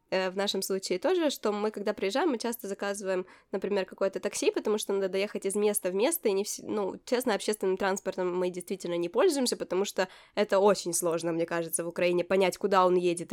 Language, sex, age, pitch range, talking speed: Ukrainian, female, 20-39, 185-230 Hz, 205 wpm